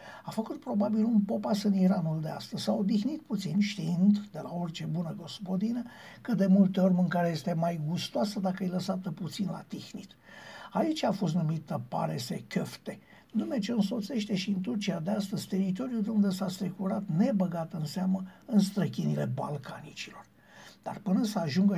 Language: Romanian